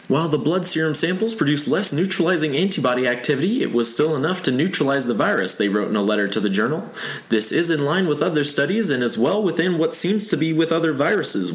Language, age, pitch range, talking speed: English, 20-39, 120-160 Hz, 230 wpm